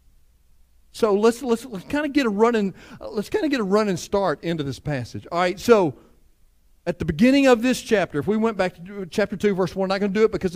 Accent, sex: American, male